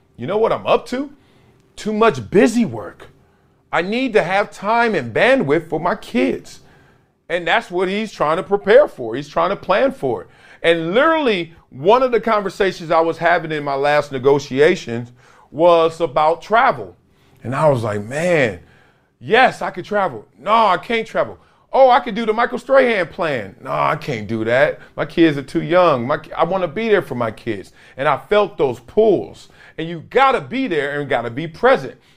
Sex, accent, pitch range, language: male, American, 145-230 Hz, English